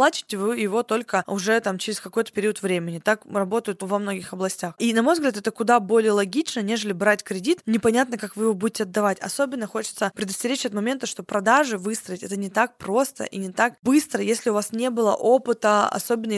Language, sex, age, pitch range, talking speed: Russian, female, 20-39, 200-235 Hz, 200 wpm